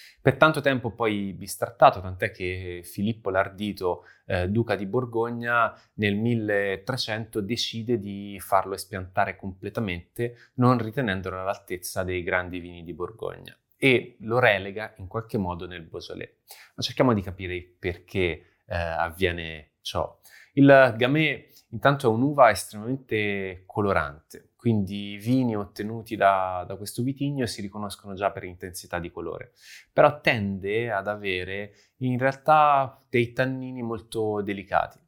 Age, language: 20-39, Italian